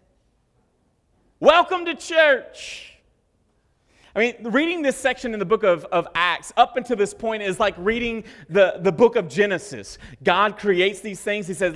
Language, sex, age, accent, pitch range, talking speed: English, male, 30-49, American, 170-235 Hz, 165 wpm